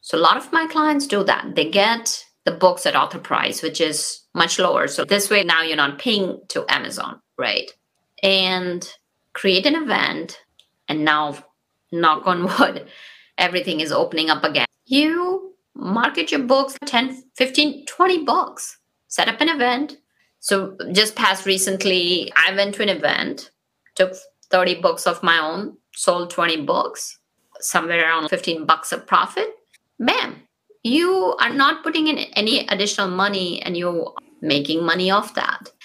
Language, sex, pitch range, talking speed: English, female, 170-260 Hz, 155 wpm